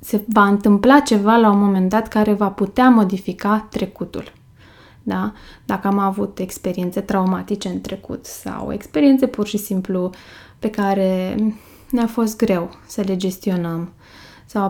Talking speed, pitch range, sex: 140 wpm, 185-220 Hz, female